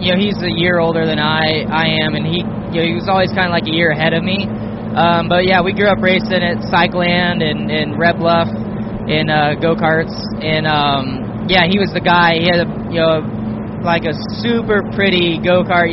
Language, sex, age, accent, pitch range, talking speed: English, male, 10-29, American, 130-180 Hz, 220 wpm